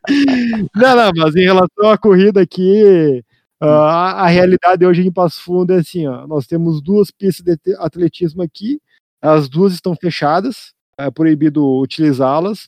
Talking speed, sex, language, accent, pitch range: 150 wpm, male, Portuguese, Brazilian, 145-185 Hz